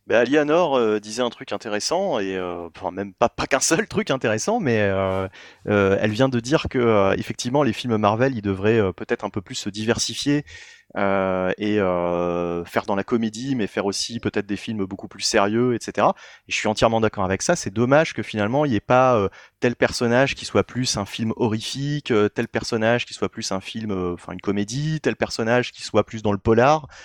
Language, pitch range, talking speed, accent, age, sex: French, 100-125 Hz, 220 wpm, French, 30-49, male